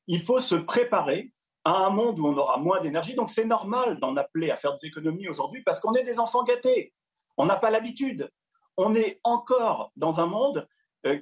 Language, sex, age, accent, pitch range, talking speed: French, male, 40-59, French, 170-240 Hz, 210 wpm